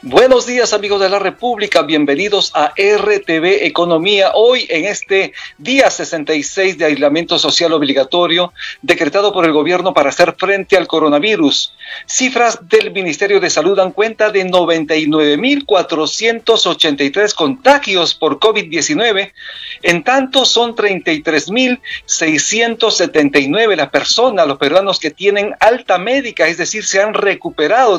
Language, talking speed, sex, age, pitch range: Spanish, 135 wpm, male, 50-69, 160-225 Hz